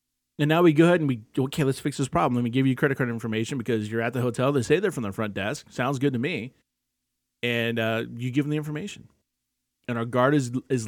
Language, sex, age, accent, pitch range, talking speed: English, male, 30-49, American, 100-140 Hz, 260 wpm